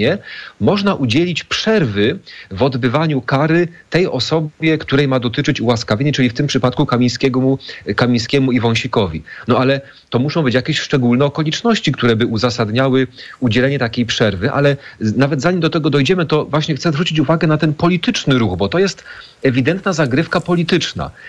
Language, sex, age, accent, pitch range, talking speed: Polish, male, 40-59, native, 120-160 Hz, 150 wpm